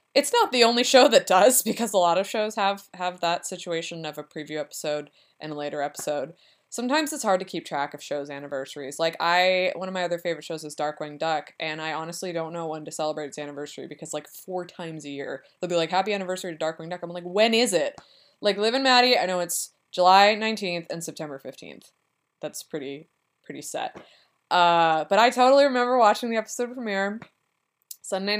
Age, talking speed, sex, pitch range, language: 20-39, 210 wpm, female, 160-210 Hz, English